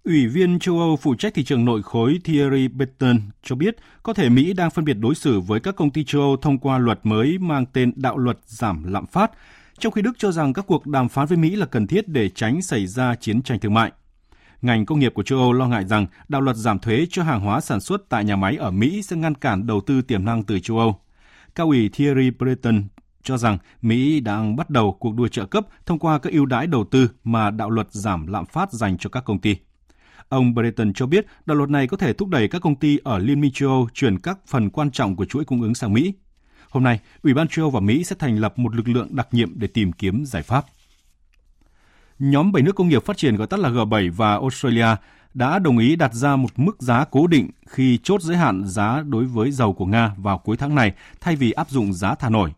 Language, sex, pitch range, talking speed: Vietnamese, male, 105-145 Hz, 250 wpm